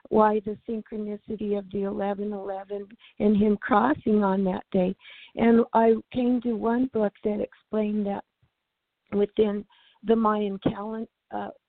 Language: English